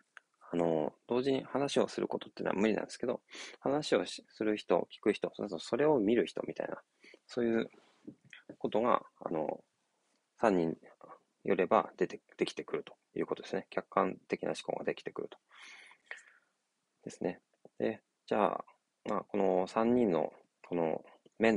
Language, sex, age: Japanese, male, 20-39